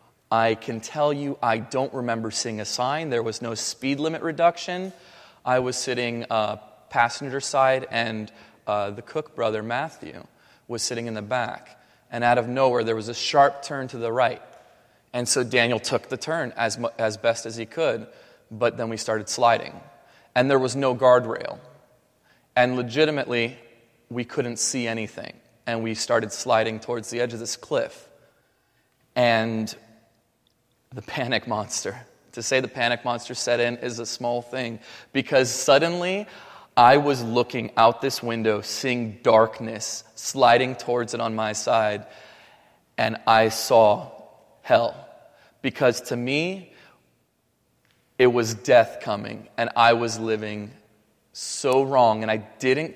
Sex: male